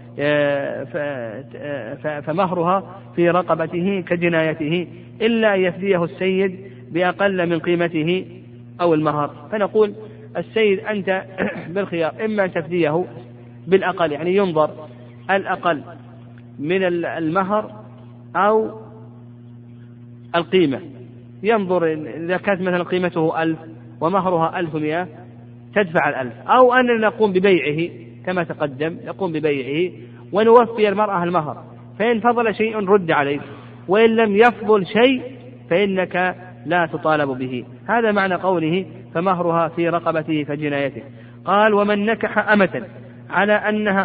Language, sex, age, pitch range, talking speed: Arabic, male, 40-59, 135-195 Hz, 100 wpm